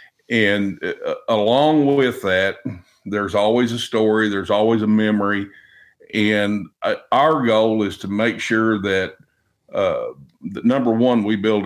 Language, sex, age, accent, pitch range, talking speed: English, male, 50-69, American, 100-120 Hz, 145 wpm